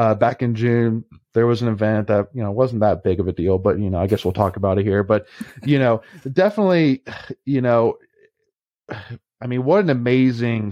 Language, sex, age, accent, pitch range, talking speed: English, male, 30-49, American, 105-125 Hz, 215 wpm